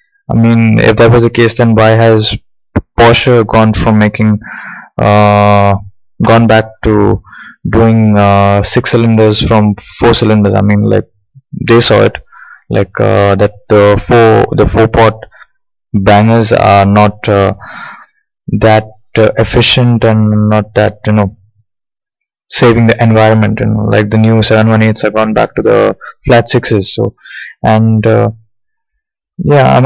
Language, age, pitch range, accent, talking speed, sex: English, 20-39, 105-120 Hz, Indian, 145 wpm, male